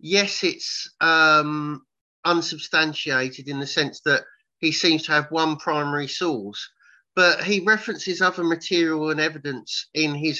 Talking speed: 140 wpm